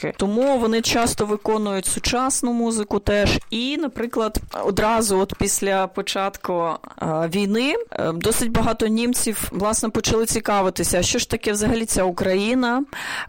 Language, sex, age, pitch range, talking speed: Ukrainian, female, 20-39, 190-230 Hz, 125 wpm